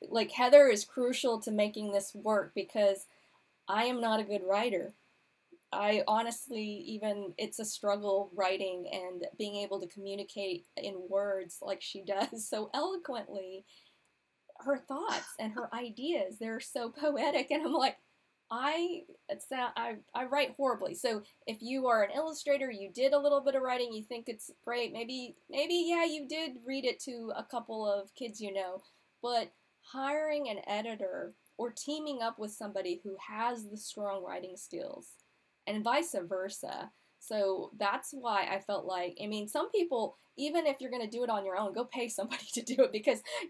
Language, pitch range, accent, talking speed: English, 195-255 Hz, American, 175 wpm